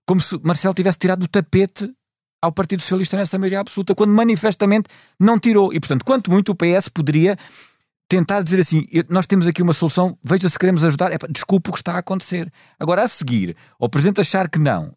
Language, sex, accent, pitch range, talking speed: Portuguese, male, Portuguese, 110-185 Hz, 200 wpm